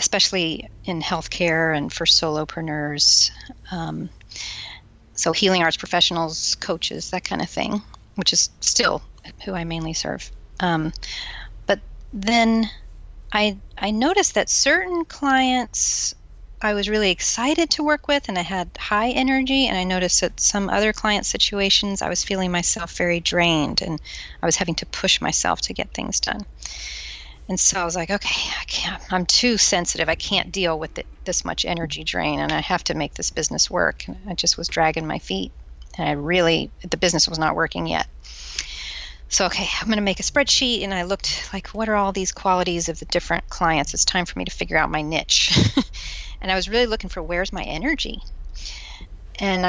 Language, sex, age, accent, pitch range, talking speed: English, female, 40-59, American, 155-205 Hz, 185 wpm